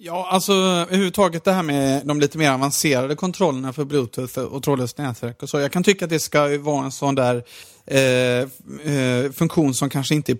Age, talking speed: 30-49, 200 wpm